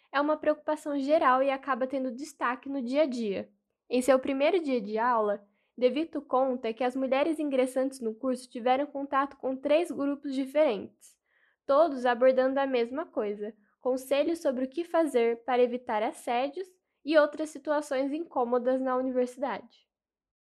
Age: 10-29